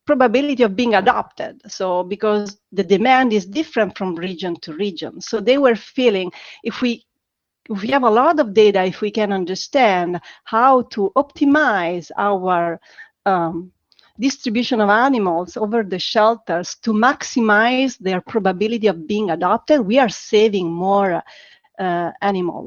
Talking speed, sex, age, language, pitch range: 145 wpm, female, 40-59, English, 185-245 Hz